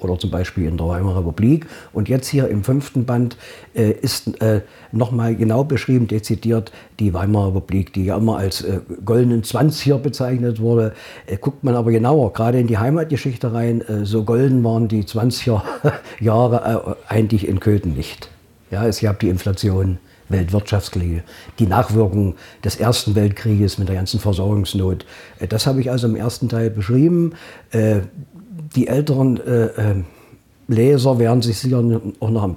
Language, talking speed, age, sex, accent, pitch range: German, 165 wpm, 50-69, male, German, 100-125 Hz